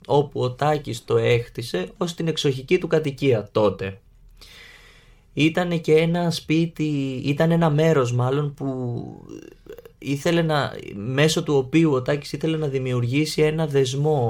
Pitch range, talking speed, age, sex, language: 115-155 Hz, 135 wpm, 20-39, male, Greek